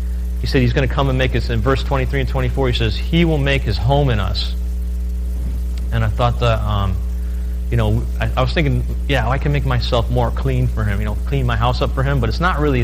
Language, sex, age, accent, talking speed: English, male, 30-49, American, 255 wpm